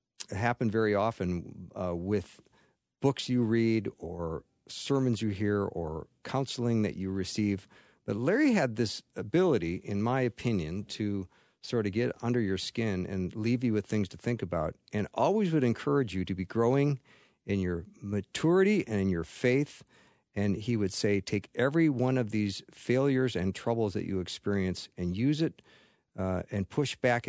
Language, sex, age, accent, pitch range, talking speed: English, male, 50-69, American, 95-120 Hz, 170 wpm